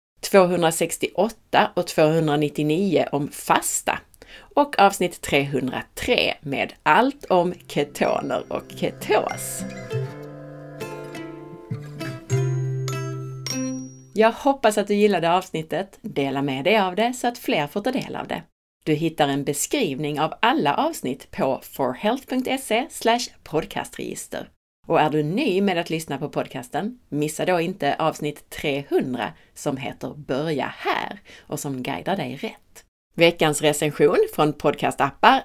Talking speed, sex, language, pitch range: 120 wpm, female, Swedish, 140-205 Hz